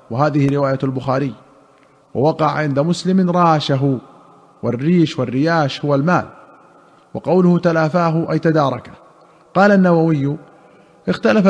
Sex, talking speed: male, 95 wpm